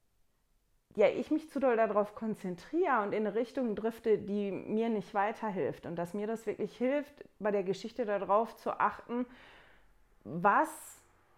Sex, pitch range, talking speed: female, 195-260 Hz, 155 wpm